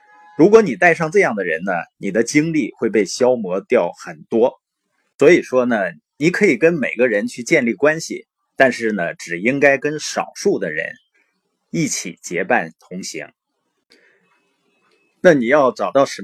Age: 30-49